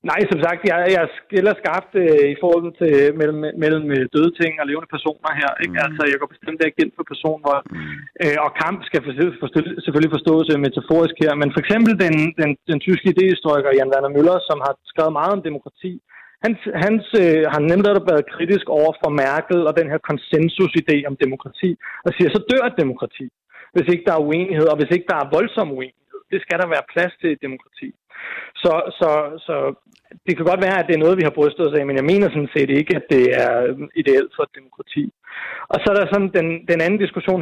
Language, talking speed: Danish, 225 wpm